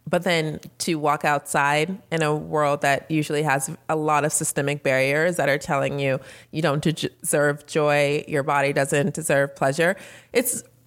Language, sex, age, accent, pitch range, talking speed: English, female, 30-49, American, 145-210 Hz, 165 wpm